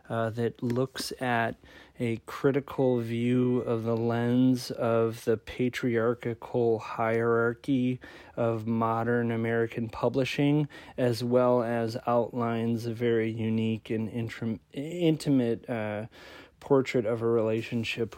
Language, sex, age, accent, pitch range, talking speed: English, male, 30-49, American, 110-125 Hz, 105 wpm